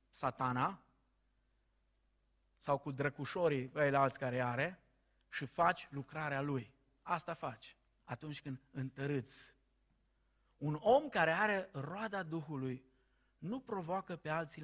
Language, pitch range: Romanian, 135-165 Hz